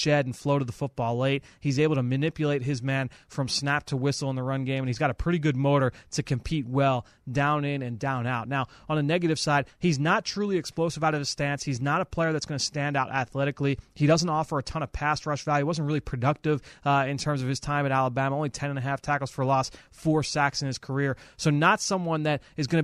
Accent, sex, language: American, male, English